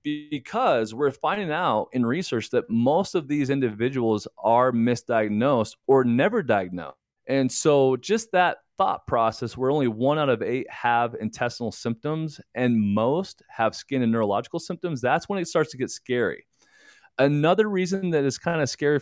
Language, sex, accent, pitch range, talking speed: English, male, American, 115-155 Hz, 165 wpm